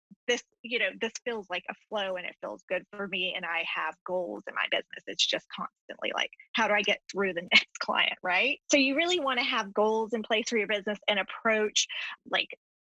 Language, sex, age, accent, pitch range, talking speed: English, female, 20-39, American, 190-240 Hz, 230 wpm